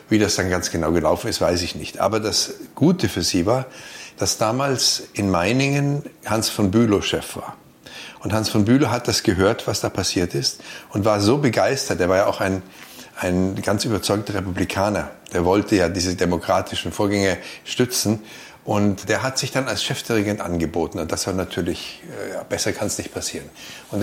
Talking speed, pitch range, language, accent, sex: 185 wpm, 100-115 Hz, German, German, male